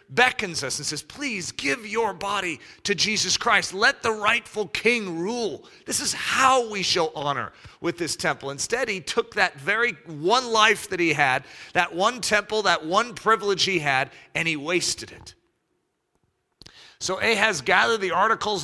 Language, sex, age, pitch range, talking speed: English, male, 40-59, 150-215 Hz, 165 wpm